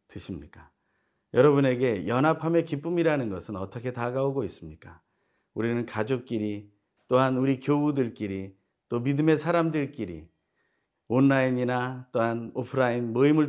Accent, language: native, Korean